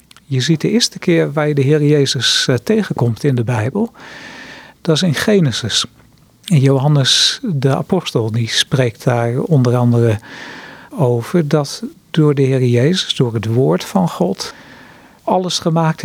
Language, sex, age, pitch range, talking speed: Dutch, male, 50-69, 135-170 Hz, 145 wpm